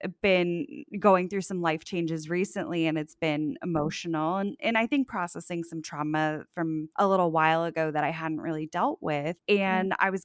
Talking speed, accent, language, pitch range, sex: 185 wpm, American, English, 165-210 Hz, female